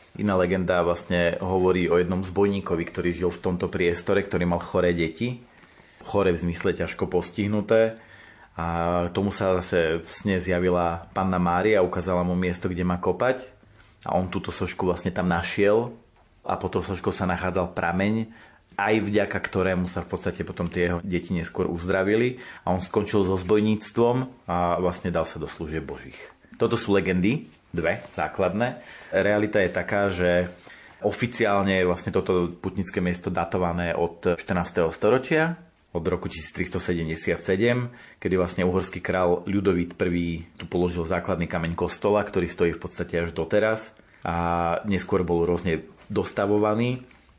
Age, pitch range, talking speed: 30-49, 85-100 Hz, 150 wpm